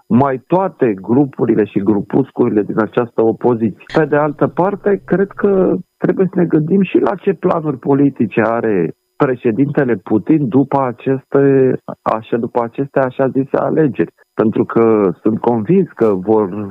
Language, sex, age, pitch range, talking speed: Romanian, male, 50-69, 110-165 Hz, 135 wpm